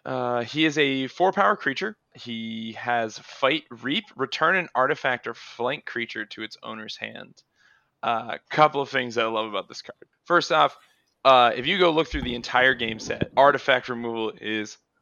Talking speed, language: 185 wpm, English